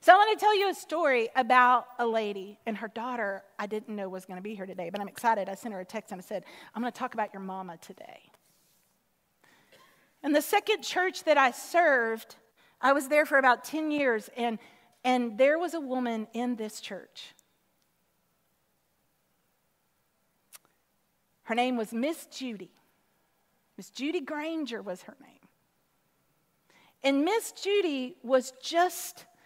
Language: English